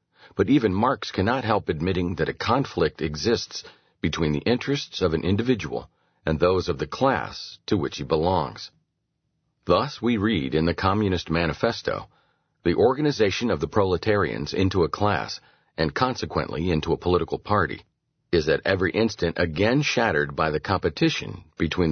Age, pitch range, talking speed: 40-59, 80-115 Hz, 155 wpm